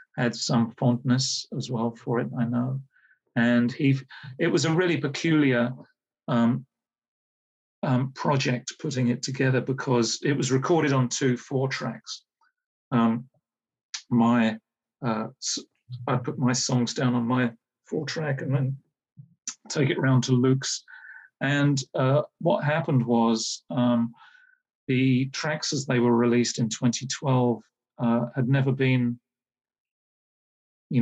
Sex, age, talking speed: male, 40-59, 130 wpm